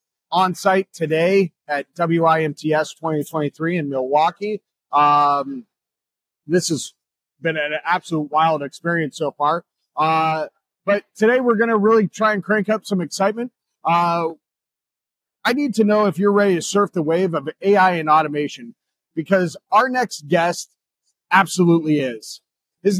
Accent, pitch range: American, 160-205 Hz